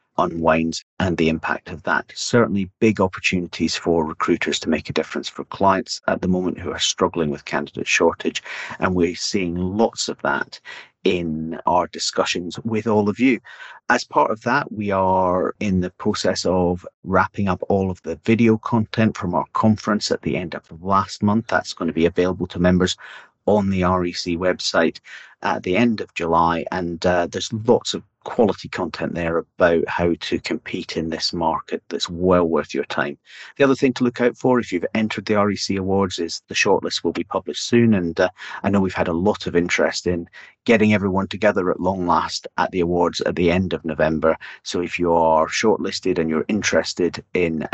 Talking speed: 195 wpm